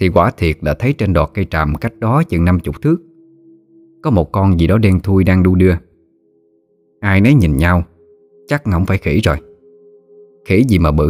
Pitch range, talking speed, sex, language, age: 85-130 Hz, 205 wpm, male, Vietnamese, 20-39